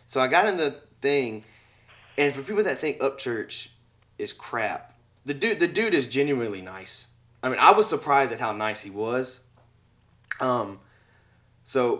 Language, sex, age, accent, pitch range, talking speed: English, male, 20-39, American, 110-140 Hz, 165 wpm